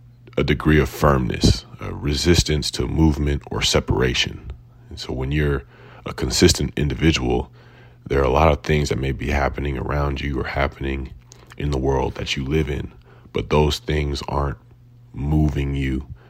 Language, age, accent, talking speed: English, 30-49, American, 160 wpm